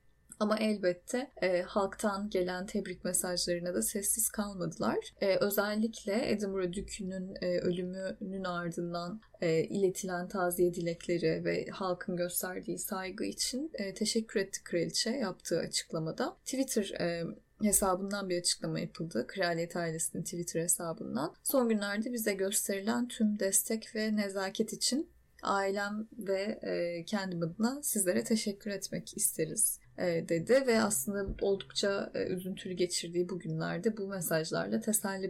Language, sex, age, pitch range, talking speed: Turkish, female, 10-29, 180-220 Hz, 120 wpm